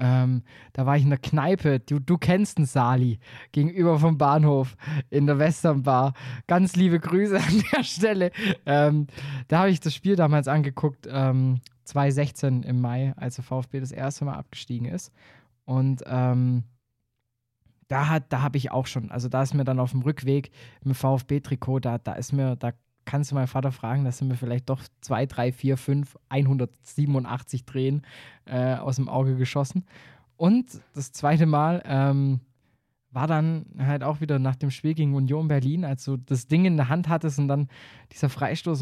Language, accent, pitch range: German, German, 125-150 Hz